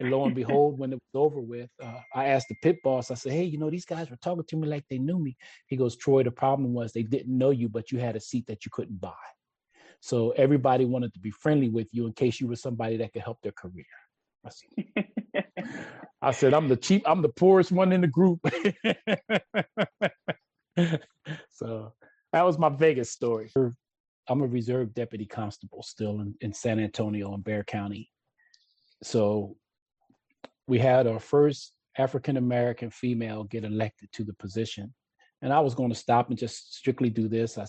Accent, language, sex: American, English, male